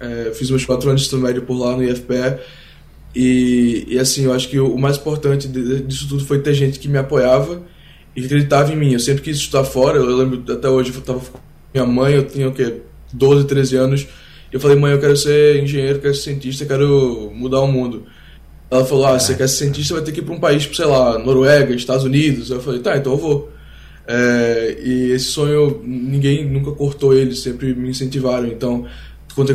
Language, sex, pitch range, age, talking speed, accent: Portuguese, male, 125-140 Hz, 10-29, 225 wpm, Brazilian